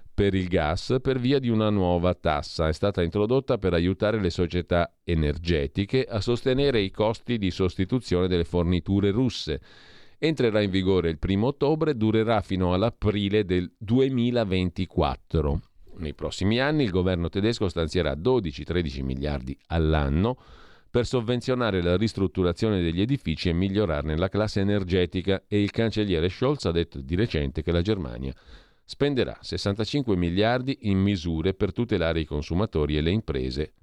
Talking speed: 145 wpm